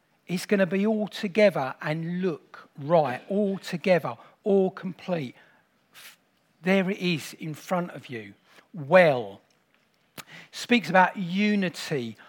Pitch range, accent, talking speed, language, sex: 165-210 Hz, British, 115 wpm, English, male